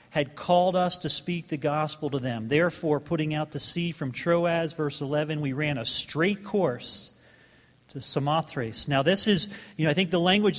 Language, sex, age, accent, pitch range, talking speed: English, male, 40-59, American, 140-185 Hz, 195 wpm